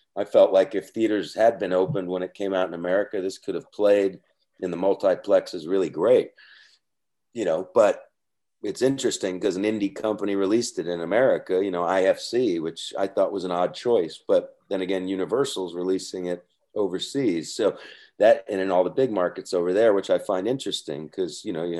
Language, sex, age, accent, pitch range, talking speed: English, male, 40-59, American, 90-155 Hz, 195 wpm